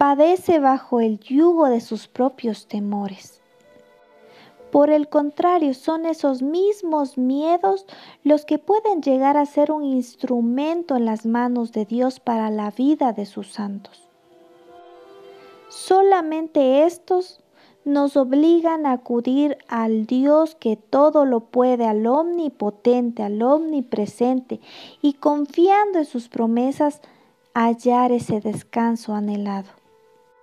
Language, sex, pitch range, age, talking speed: Spanish, female, 235-310 Hz, 40-59, 115 wpm